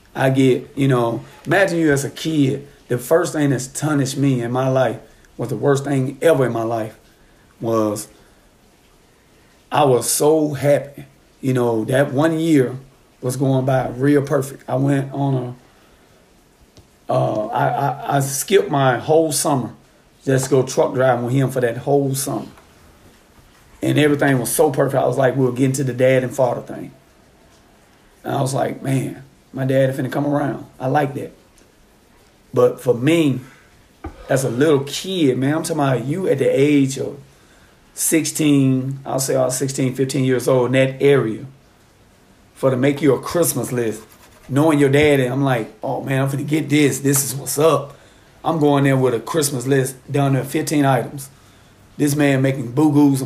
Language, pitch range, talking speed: English, 125-145 Hz, 180 wpm